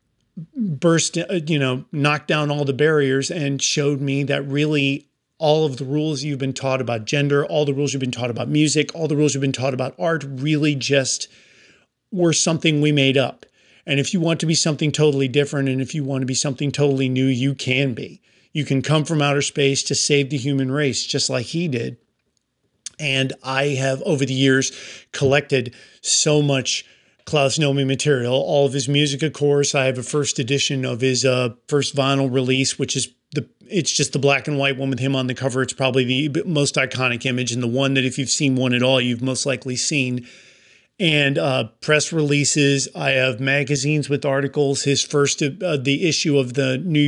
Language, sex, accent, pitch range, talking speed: English, male, American, 135-150 Hz, 205 wpm